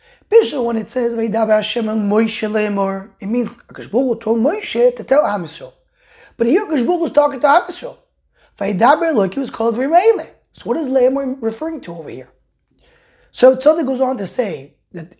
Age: 20-39